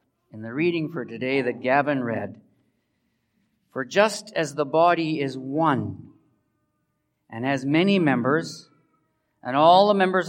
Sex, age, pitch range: male, 50-69, 120-160 Hz